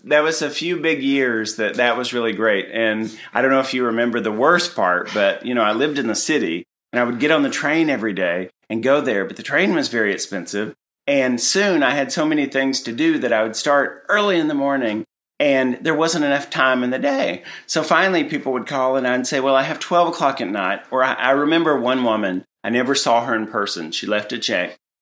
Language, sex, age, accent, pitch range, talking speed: English, male, 40-59, American, 115-145 Hz, 245 wpm